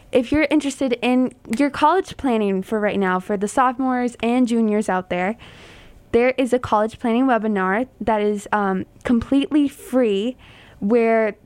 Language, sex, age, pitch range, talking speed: English, female, 10-29, 210-250 Hz, 150 wpm